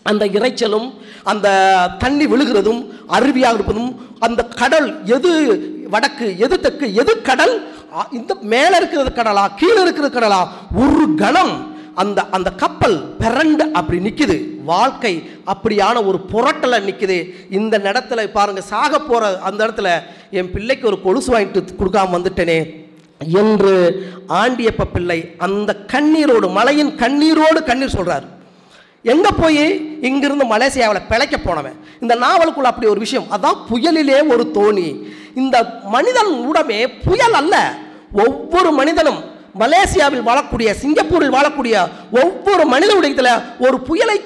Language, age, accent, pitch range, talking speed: Tamil, 40-59, native, 210-310 Hz, 120 wpm